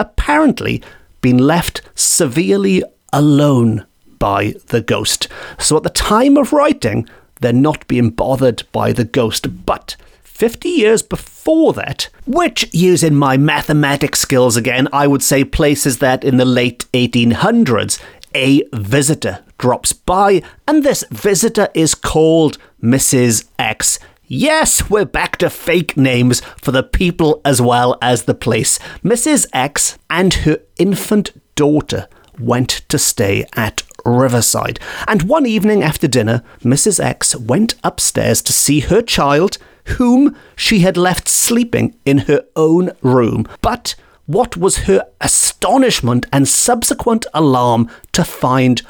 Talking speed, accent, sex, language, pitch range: 135 wpm, British, male, English, 125-185 Hz